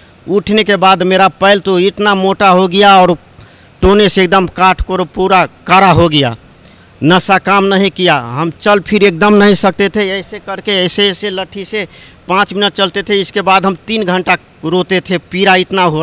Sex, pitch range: male, 155-195 Hz